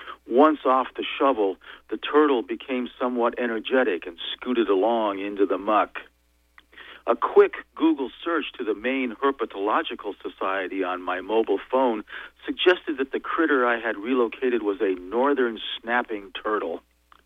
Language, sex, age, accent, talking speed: English, male, 50-69, American, 140 wpm